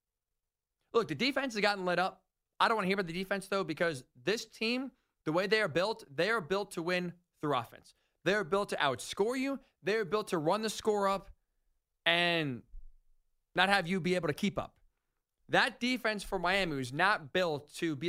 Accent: American